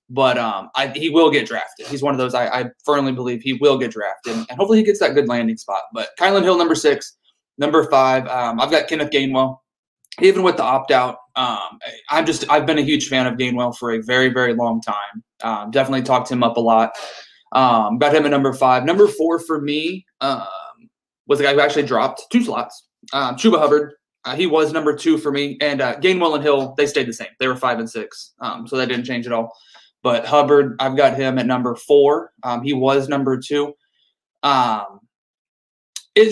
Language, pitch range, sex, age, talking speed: English, 125-155 Hz, male, 20-39, 225 wpm